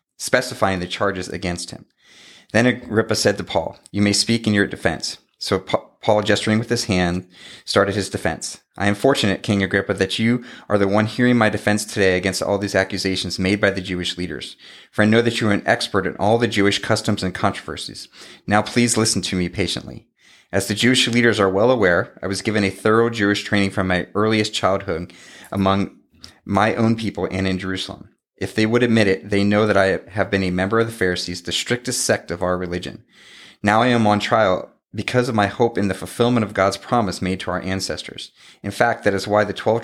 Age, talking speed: 30-49, 215 wpm